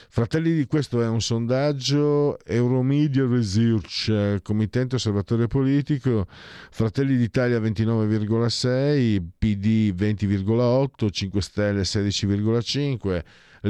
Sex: male